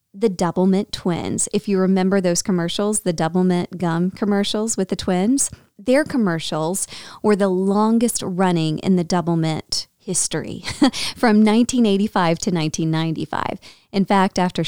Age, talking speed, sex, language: 30-49, 145 wpm, female, English